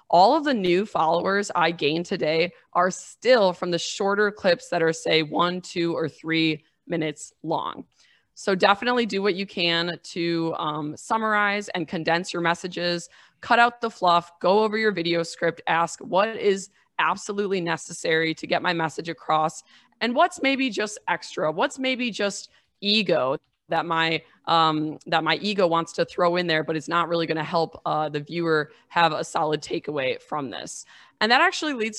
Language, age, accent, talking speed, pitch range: English, 20-39, American, 175 wpm, 165-205 Hz